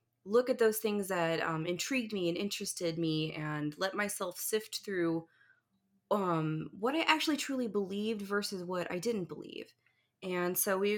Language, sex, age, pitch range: English, female, 20-39, 165-210 Hz